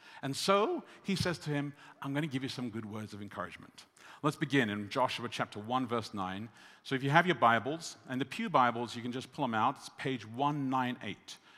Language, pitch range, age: English, 110-155 Hz, 50-69